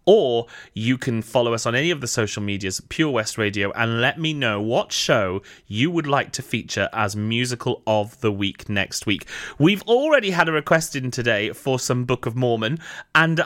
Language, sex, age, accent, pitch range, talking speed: English, male, 30-49, British, 115-165 Hz, 200 wpm